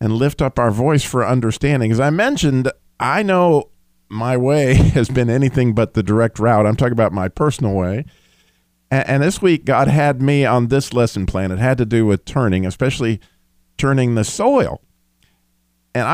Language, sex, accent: English, male, American